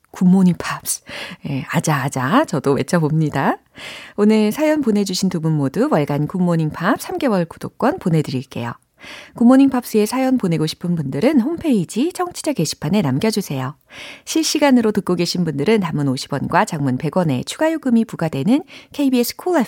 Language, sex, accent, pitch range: Korean, female, native, 145-245 Hz